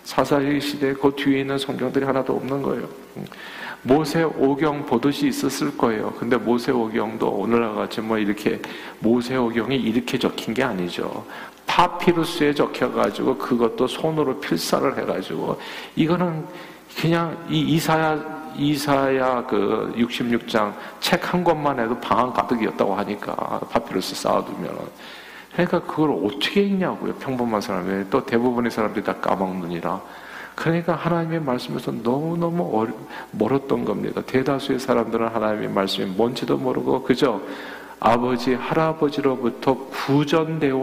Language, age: Korean, 50-69